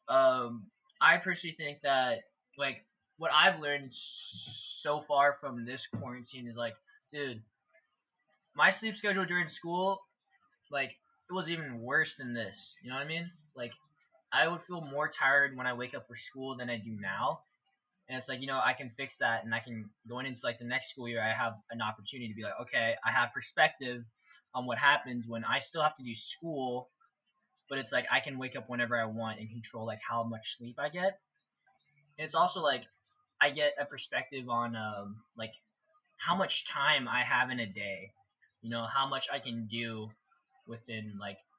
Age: 20-39